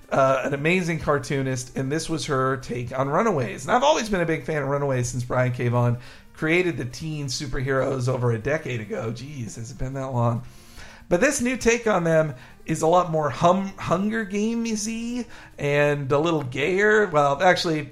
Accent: American